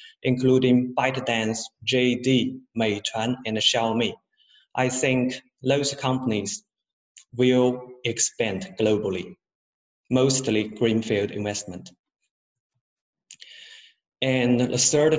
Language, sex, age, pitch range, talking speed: English, male, 30-49, 120-140 Hz, 75 wpm